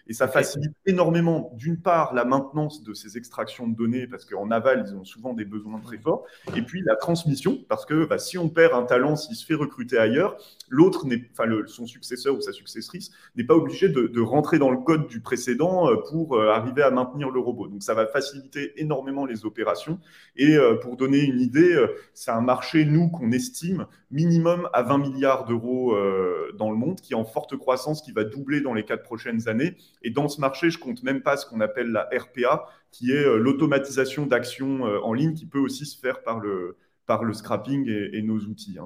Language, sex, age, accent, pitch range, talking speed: French, male, 30-49, French, 115-155 Hz, 215 wpm